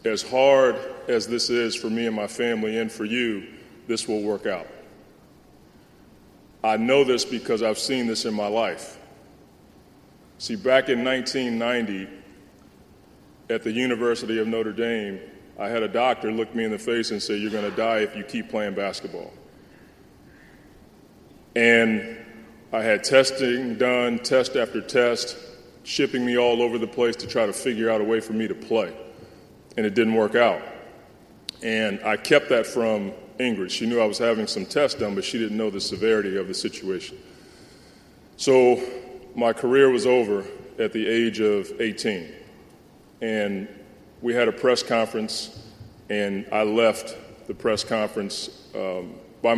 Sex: male